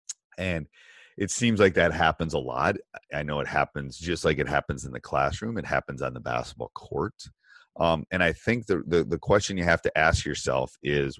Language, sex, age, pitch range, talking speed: English, male, 30-49, 70-85 Hz, 210 wpm